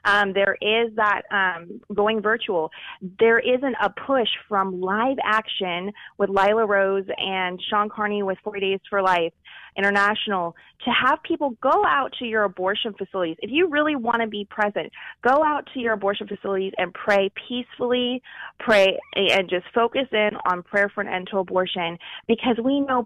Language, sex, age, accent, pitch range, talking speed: English, female, 20-39, American, 185-220 Hz, 170 wpm